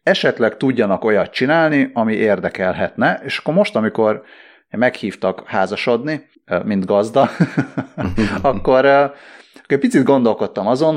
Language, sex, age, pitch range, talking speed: Hungarian, male, 30-49, 100-150 Hz, 105 wpm